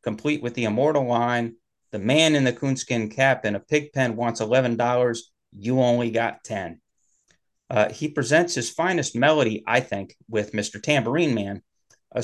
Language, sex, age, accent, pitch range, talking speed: English, male, 30-49, American, 110-130 Hz, 165 wpm